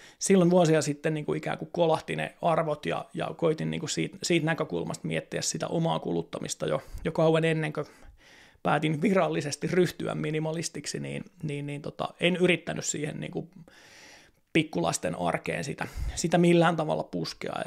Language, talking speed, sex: Finnish, 155 wpm, male